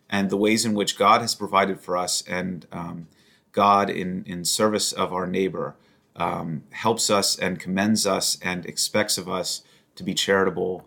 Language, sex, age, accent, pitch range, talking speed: English, male, 30-49, American, 90-105 Hz, 175 wpm